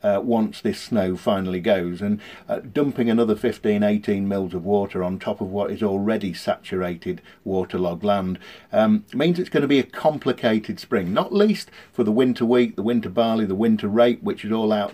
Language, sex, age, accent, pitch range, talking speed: English, male, 50-69, British, 100-135 Hz, 195 wpm